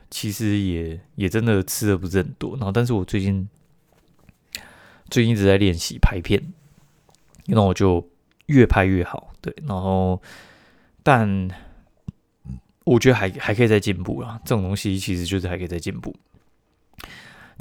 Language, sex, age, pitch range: Chinese, male, 20-39, 90-115 Hz